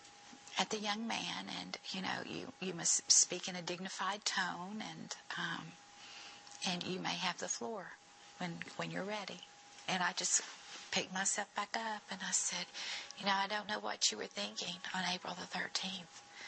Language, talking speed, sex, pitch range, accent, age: English, 180 wpm, female, 170-205 Hz, American, 50-69